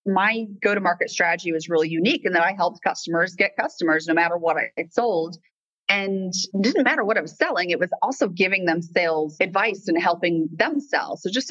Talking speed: 210 wpm